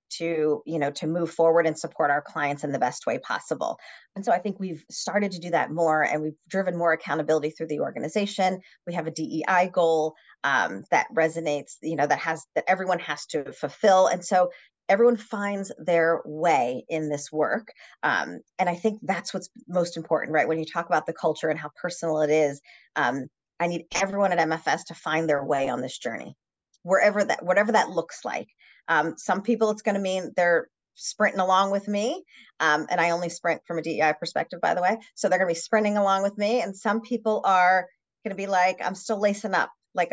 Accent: American